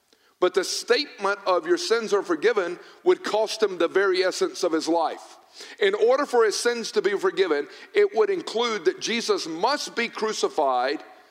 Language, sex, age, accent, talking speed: English, male, 50-69, American, 175 wpm